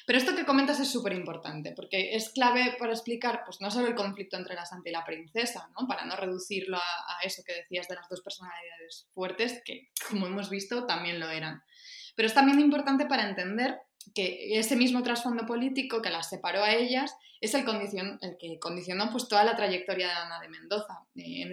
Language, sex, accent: Spanish, female, Spanish